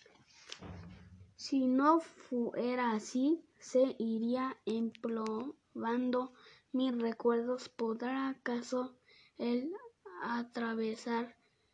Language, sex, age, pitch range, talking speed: Spanish, female, 20-39, 230-270 Hz, 65 wpm